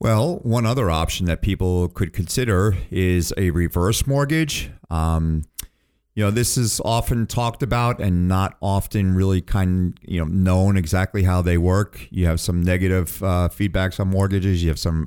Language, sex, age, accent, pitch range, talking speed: English, male, 40-59, American, 90-105 Hz, 170 wpm